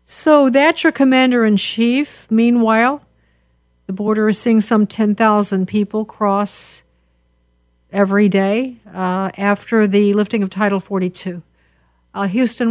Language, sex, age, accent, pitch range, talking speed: English, female, 50-69, American, 185-225 Hz, 115 wpm